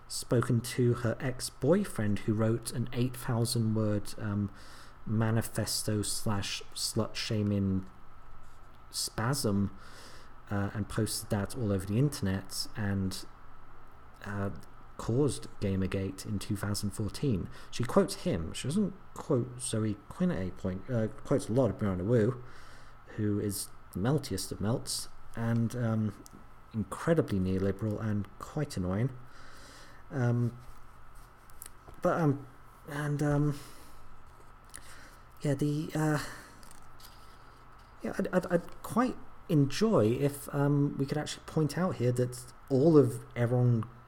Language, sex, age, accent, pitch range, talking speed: English, male, 40-59, British, 100-135 Hz, 120 wpm